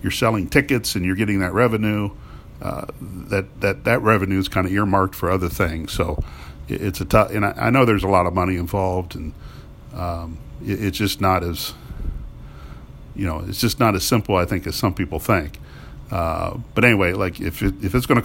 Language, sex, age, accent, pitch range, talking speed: English, male, 50-69, American, 85-100 Hz, 210 wpm